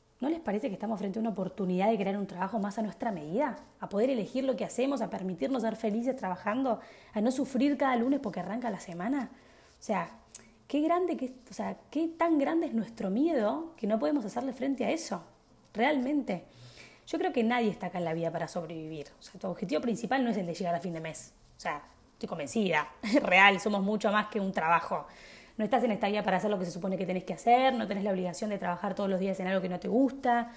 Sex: female